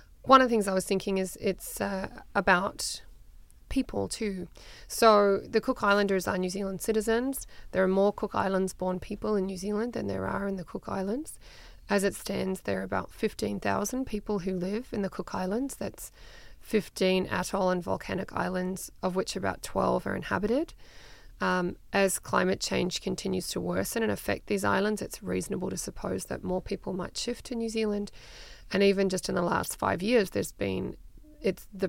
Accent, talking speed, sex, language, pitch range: Australian, 185 wpm, female, Danish, 185-220 Hz